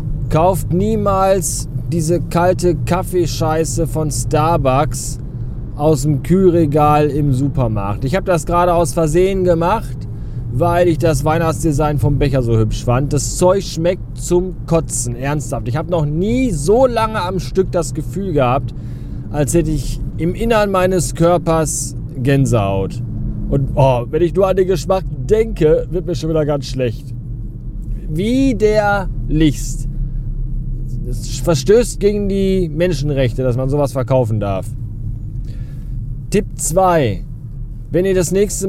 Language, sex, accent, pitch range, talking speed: German, male, German, 130-190 Hz, 135 wpm